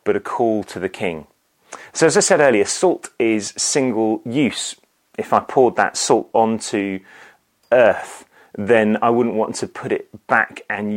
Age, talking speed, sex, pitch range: 30-49, 170 wpm, male, 95-120 Hz